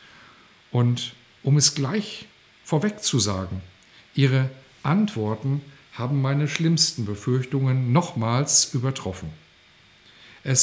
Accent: German